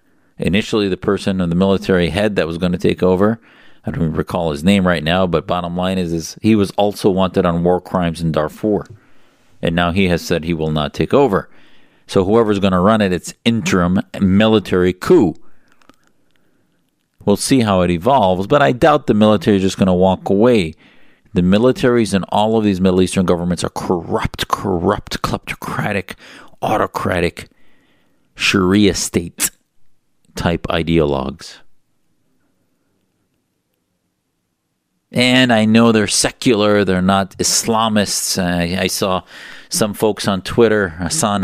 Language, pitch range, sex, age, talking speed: English, 85-100 Hz, male, 50-69, 150 wpm